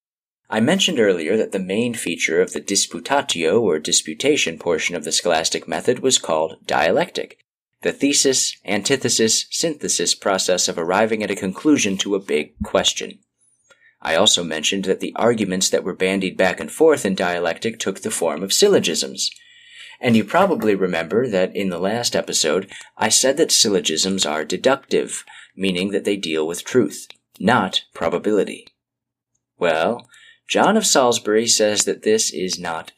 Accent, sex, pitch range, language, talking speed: American, male, 95-130 Hz, English, 150 wpm